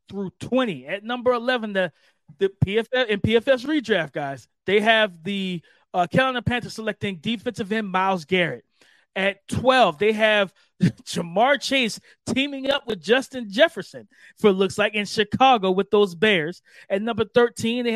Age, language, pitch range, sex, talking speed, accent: 30-49, English, 195-240 Hz, male, 155 wpm, American